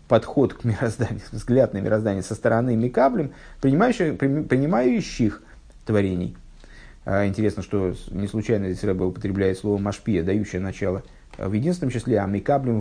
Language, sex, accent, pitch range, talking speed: Russian, male, native, 100-145 Hz, 130 wpm